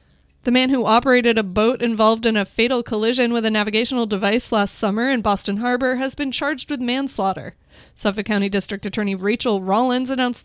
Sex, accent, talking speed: female, American, 185 wpm